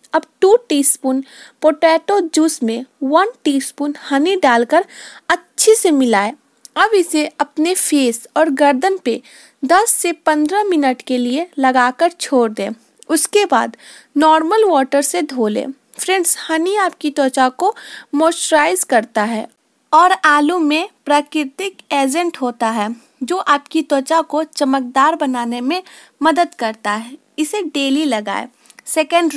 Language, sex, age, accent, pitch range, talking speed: Hindi, female, 20-39, native, 265-335 Hz, 135 wpm